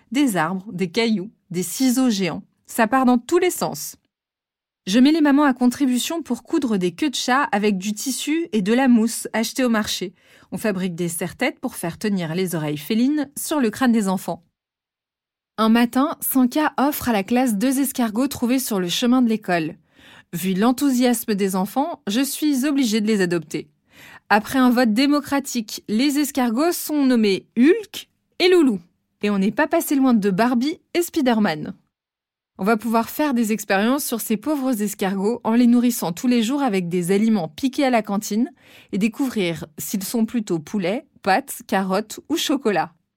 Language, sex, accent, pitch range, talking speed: French, female, French, 195-260 Hz, 180 wpm